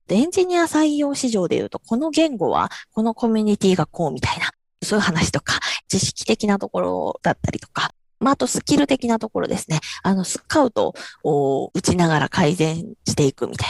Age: 20-39